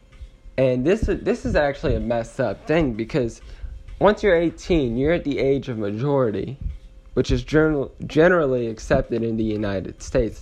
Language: English